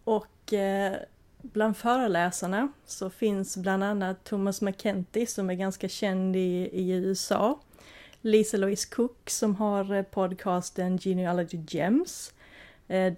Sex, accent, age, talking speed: female, native, 30-49, 120 wpm